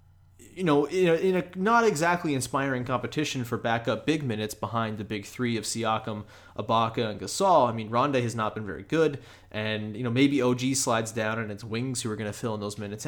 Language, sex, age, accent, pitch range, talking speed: English, male, 30-49, American, 110-145 Hz, 220 wpm